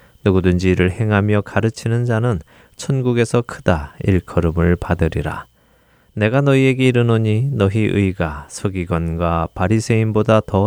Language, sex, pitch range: Korean, male, 90-120 Hz